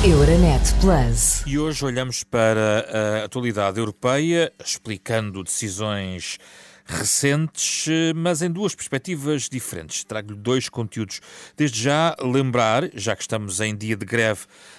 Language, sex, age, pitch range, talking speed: Portuguese, male, 30-49, 105-125 Hz, 115 wpm